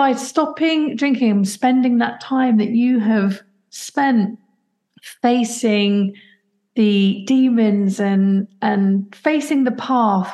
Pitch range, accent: 200-250 Hz, British